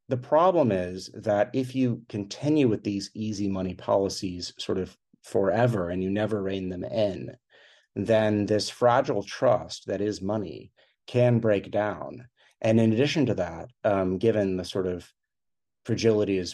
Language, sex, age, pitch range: English, male, 40-59, 95-110 Hz